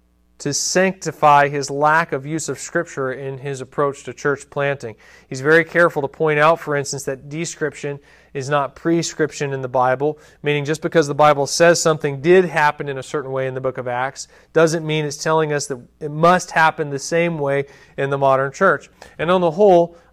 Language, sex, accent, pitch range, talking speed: English, male, American, 140-180 Hz, 205 wpm